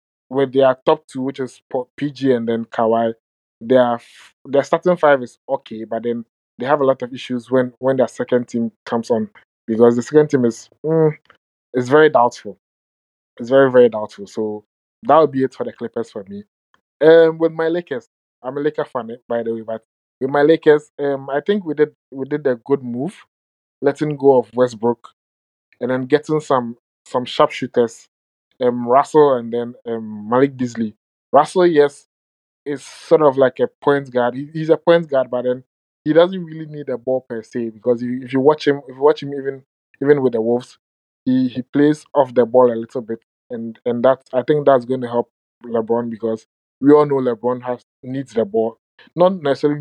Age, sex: 20-39, male